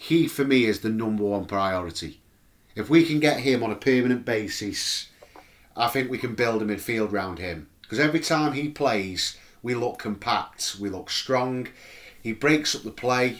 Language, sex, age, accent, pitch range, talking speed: English, male, 30-49, British, 105-135 Hz, 190 wpm